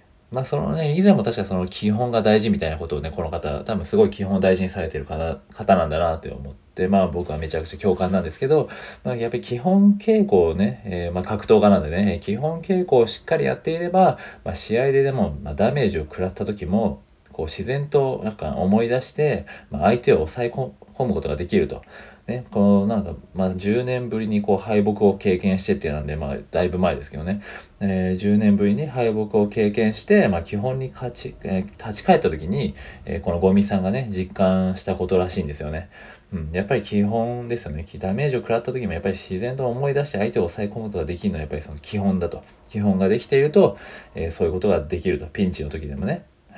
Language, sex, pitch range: Japanese, male, 90-125 Hz